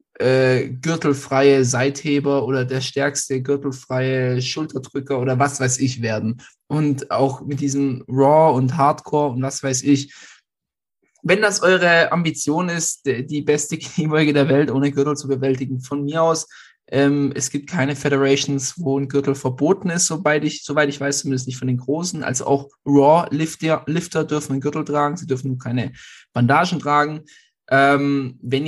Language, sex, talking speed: German, male, 160 wpm